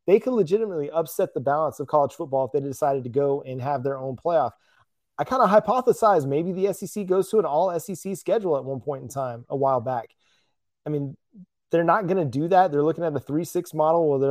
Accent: American